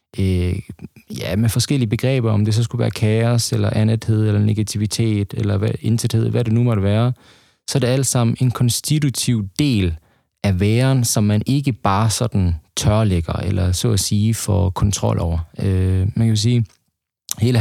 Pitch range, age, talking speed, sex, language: 105-125 Hz, 20-39, 175 wpm, male, Danish